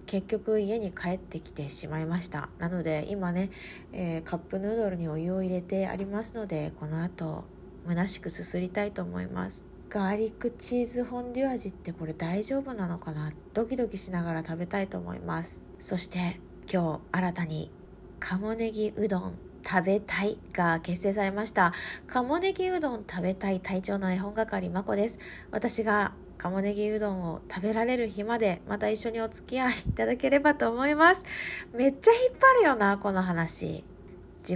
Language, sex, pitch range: Japanese, female, 175-225 Hz